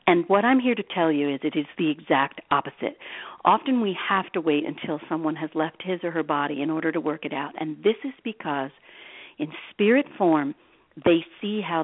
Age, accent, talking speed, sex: 50-69, American, 215 wpm, female